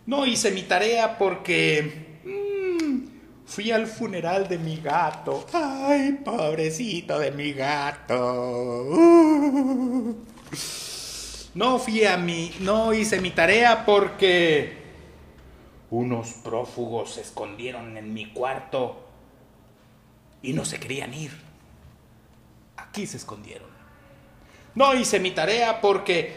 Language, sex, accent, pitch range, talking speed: Spanish, male, Mexican, 155-235 Hz, 100 wpm